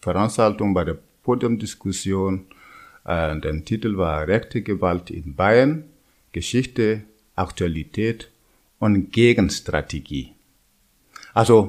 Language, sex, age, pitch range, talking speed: German, male, 50-69, 90-115 Hz, 90 wpm